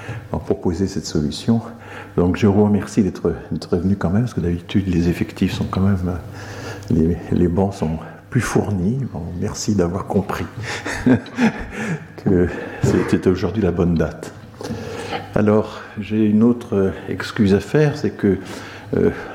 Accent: French